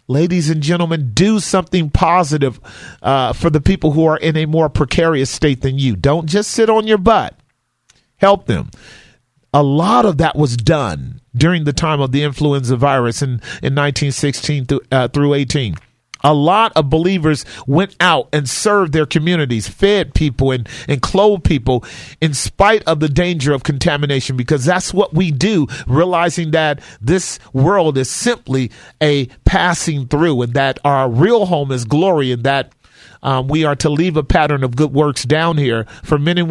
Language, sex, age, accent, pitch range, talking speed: English, male, 40-59, American, 135-170 Hz, 180 wpm